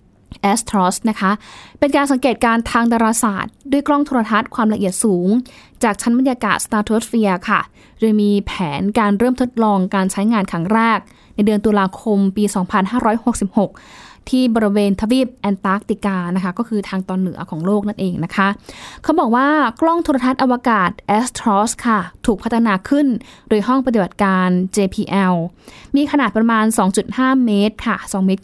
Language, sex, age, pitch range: Thai, female, 20-39, 195-235 Hz